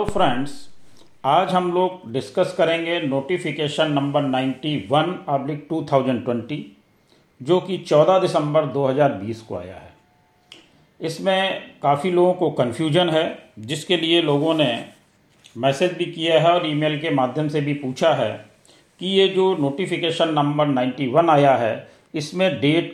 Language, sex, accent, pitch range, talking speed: Hindi, male, native, 135-170 Hz, 135 wpm